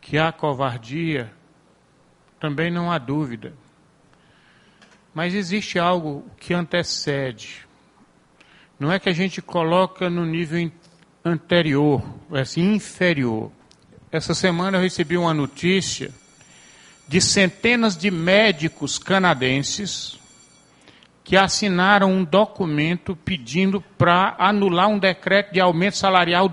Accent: Brazilian